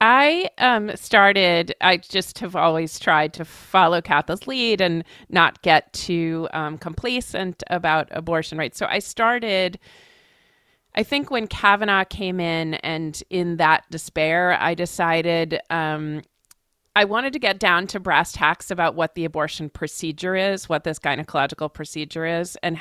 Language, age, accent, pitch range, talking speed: English, 40-59, American, 160-200 Hz, 150 wpm